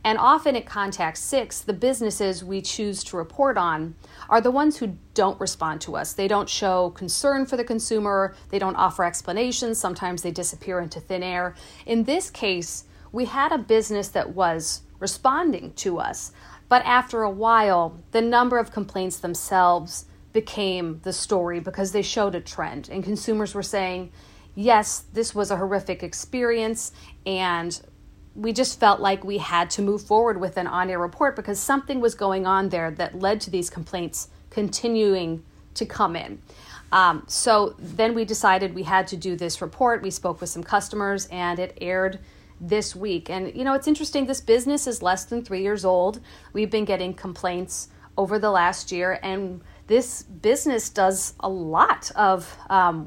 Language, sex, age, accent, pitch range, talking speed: English, female, 40-59, American, 180-225 Hz, 175 wpm